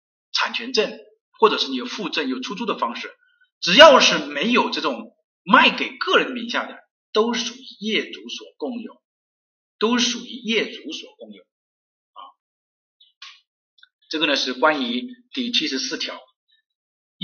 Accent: native